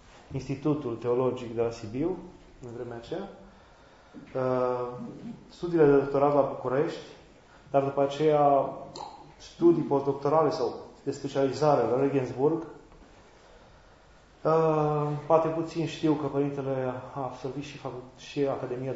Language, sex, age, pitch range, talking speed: Romanian, male, 30-49, 125-145 Hz, 110 wpm